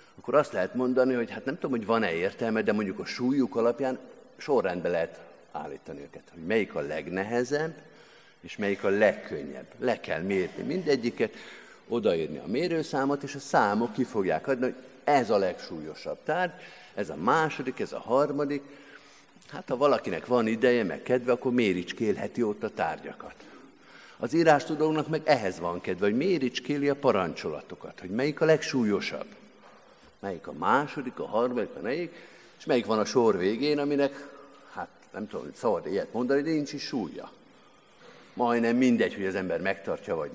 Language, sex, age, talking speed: Hungarian, male, 50-69, 160 wpm